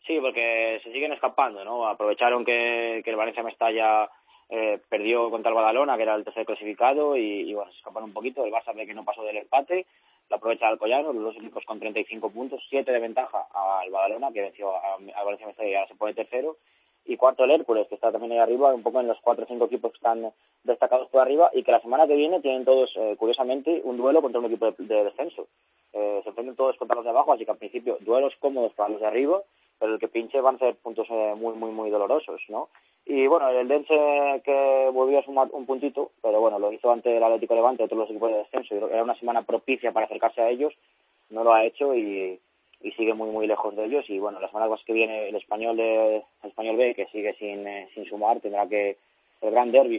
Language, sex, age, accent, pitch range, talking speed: Spanish, male, 20-39, Spanish, 110-130 Hz, 240 wpm